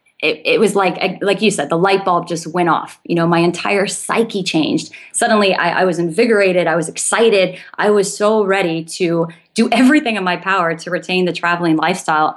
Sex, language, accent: female, English, American